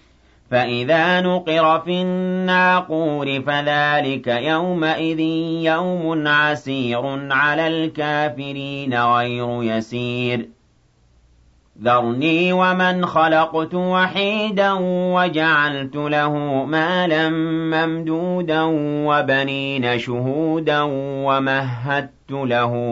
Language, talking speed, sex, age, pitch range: Arabic, 65 wpm, male, 40-59, 120-160 Hz